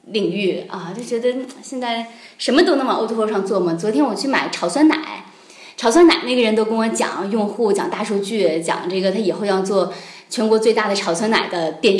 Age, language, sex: 20-39, Chinese, female